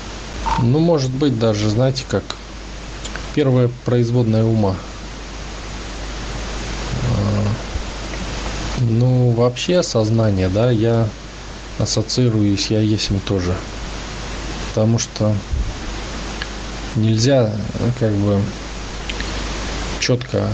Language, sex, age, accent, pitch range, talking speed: Russian, male, 20-39, native, 100-120 Hz, 75 wpm